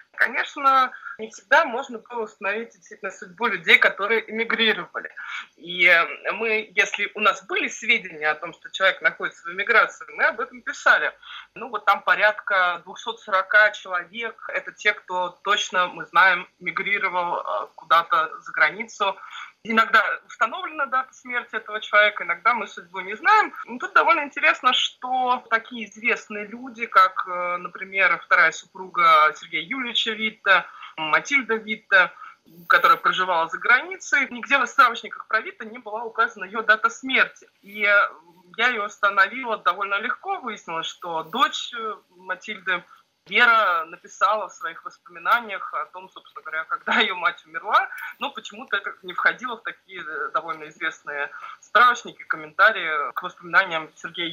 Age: 20-39